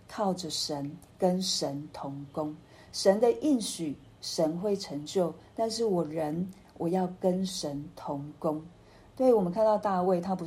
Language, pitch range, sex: Chinese, 160-200 Hz, female